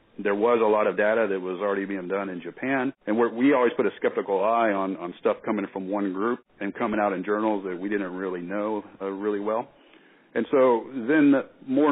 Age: 40-59